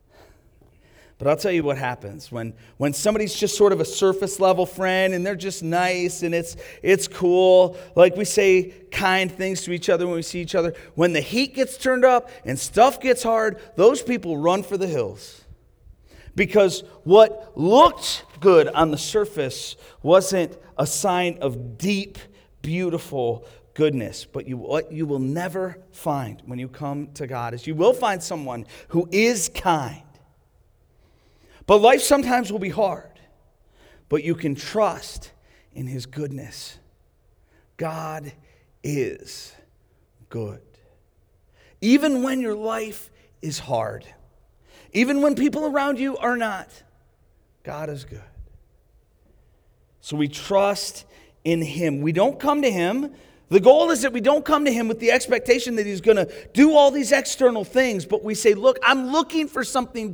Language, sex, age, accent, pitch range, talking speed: English, male, 40-59, American, 150-230 Hz, 155 wpm